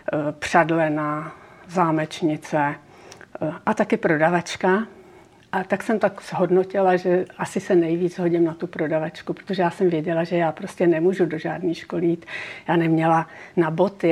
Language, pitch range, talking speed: Czech, 170-190 Hz, 140 wpm